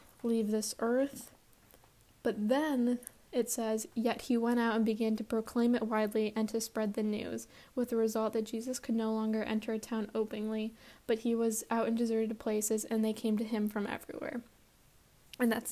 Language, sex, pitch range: English, female, 215-235 Hz